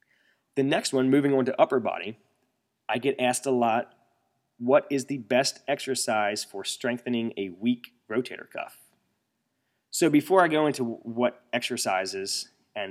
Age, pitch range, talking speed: 20-39, 110-140 Hz, 150 wpm